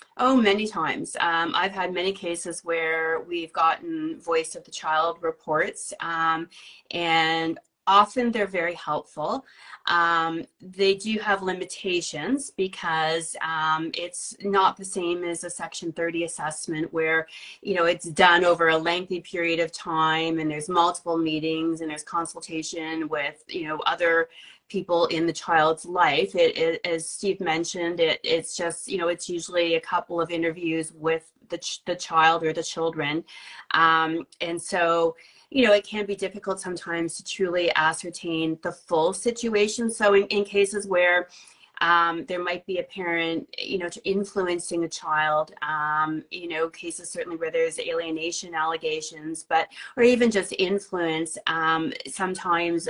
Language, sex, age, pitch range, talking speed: English, female, 30-49, 165-190 Hz, 155 wpm